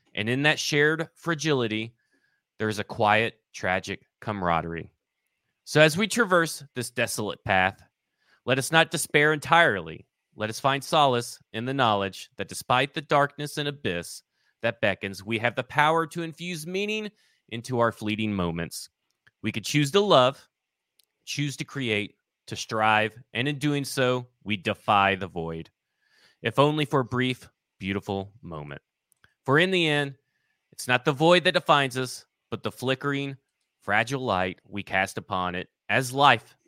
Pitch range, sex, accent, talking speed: 105-150 Hz, male, American, 155 wpm